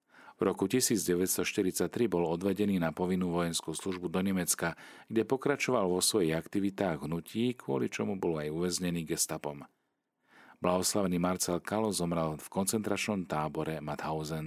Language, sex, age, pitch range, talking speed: Slovak, male, 40-59, 80-105 Hz, 130 wpm